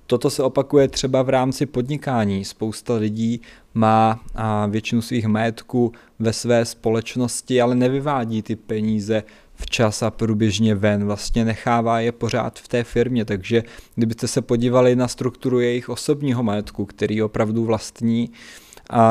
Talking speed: 140 wpm